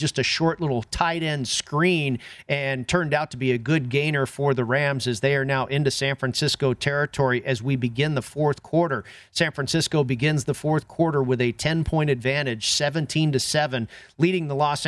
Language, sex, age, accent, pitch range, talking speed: English, male, 40-59, American, 135-165 Hz, 195 wpm